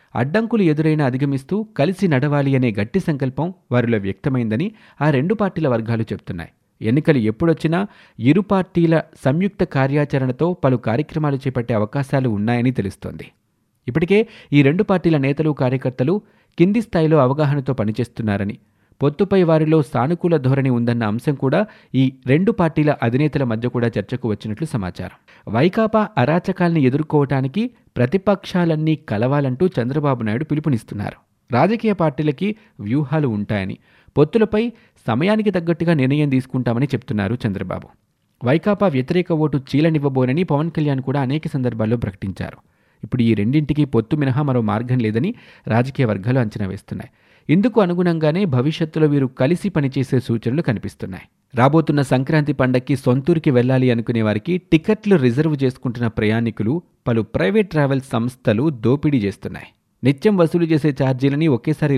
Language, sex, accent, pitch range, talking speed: Telugu, male, native, 120-160 Hz, 120 wpm